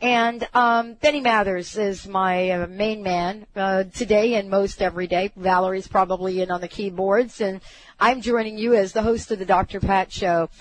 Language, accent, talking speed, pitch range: English, American, 185 wpm, 190-230 Hz